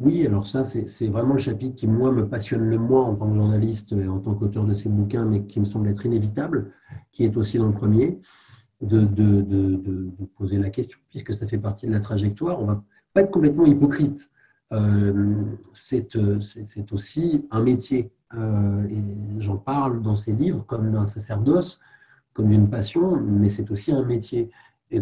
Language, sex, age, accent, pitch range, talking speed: French, male, 40-59, French, 105-125 Hz, 190 wpm